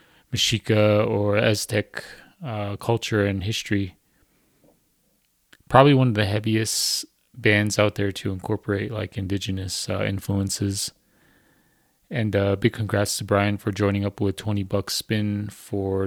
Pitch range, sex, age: 95-105 Hz, male, 30-49